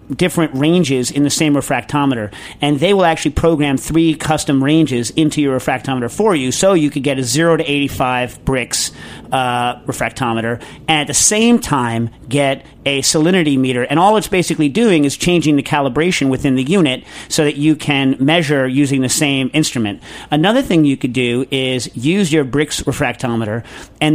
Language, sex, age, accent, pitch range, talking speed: English, male, 40-59, American, 130-160 Hz, 175 wpm